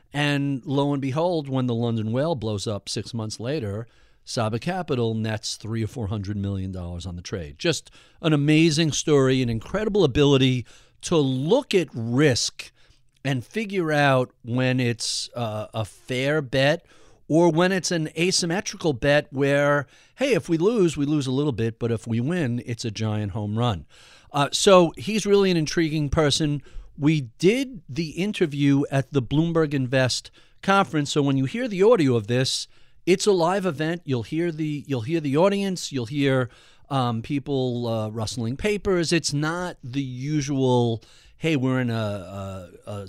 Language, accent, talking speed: English, American, 165 wpm